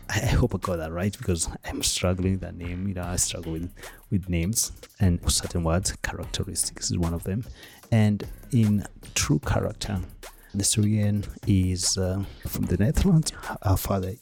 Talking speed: 170 wpm